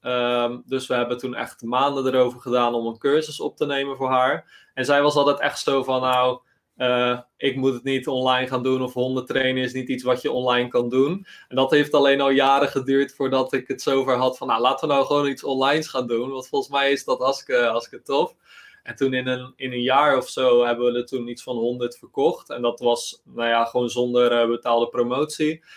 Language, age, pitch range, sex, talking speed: Dutch, 20-39, 125-140 Hz, male, 230 wpm